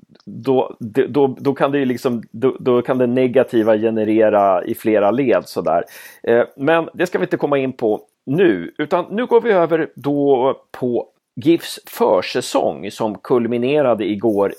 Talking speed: 155 wpm